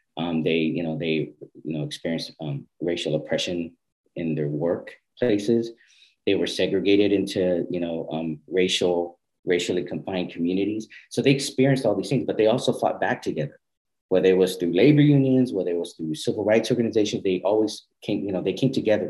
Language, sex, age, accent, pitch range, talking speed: English, male, 40-59, American, 85-115 Hz, 180 wpm